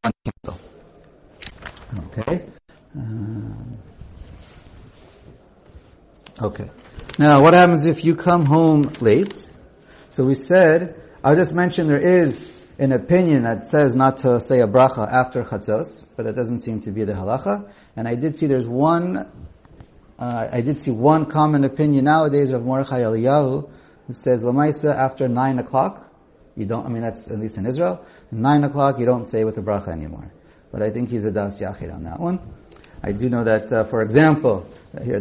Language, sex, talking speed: English, male, 165 wpm